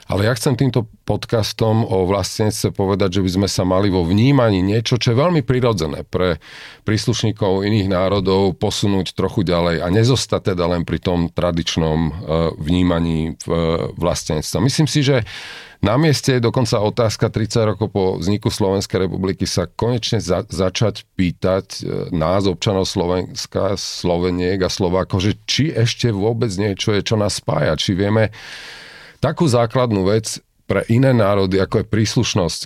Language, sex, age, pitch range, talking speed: Slovak, male, 40-59, 90-115 Hz, 150 wpm